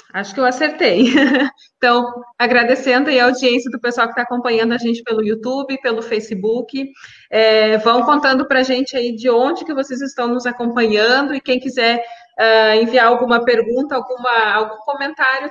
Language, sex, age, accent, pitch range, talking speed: Portuguese, female, 20-39, Brazilian, 225-265 Hz, 160 wpm